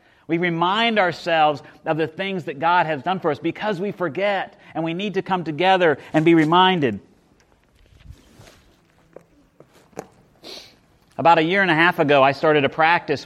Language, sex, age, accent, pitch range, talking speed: English, male, 40-59, American, 130-180 Hz, 160 wpm